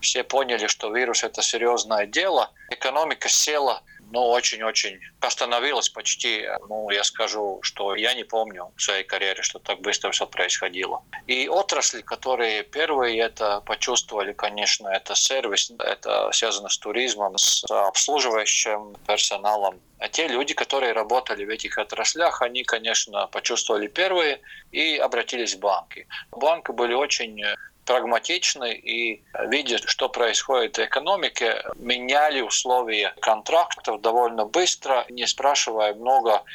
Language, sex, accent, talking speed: Russian, male, native, 130 wpm